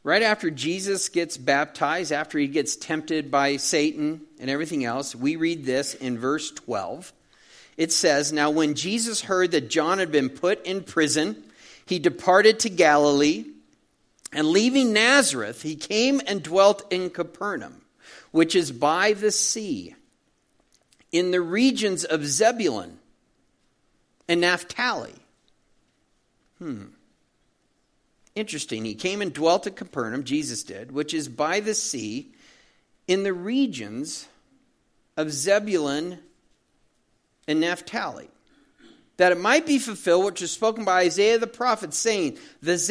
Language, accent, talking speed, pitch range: English, American, 130 wpm, 160-230 Hz